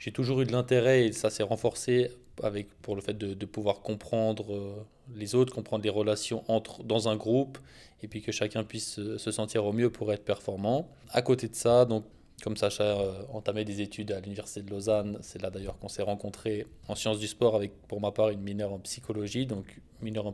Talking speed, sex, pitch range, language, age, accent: 220 wpm, male, 105-115 Hz, French, 20-39, French